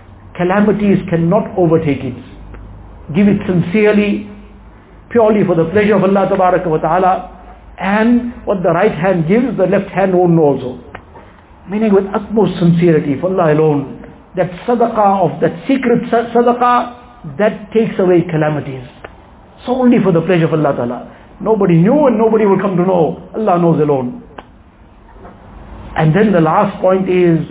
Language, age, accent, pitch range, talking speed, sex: English, 60-79, Indian, 160-215 Hz, 150 wpm, male